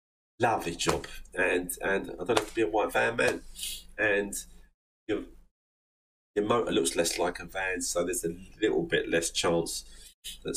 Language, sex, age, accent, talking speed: English, male, 30-49, British, 170 wpm